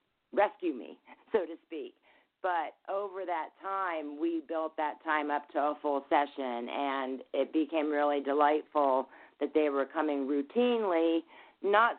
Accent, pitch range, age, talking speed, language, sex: American, 150-180 Hz, 40-59, 145 wpm, English, female